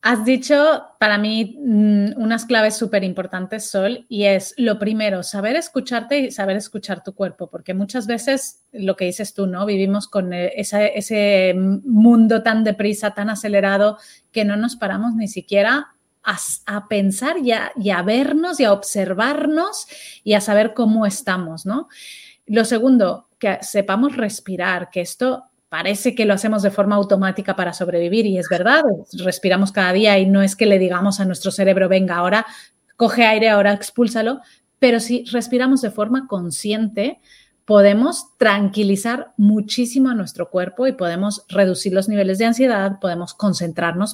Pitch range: 195-235 Hz